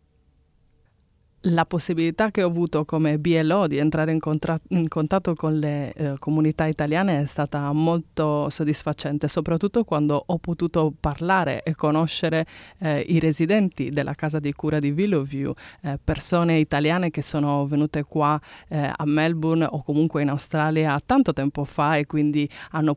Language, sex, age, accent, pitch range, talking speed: English, female, 20-39, Italian, 150-165 Hz, 150 wpm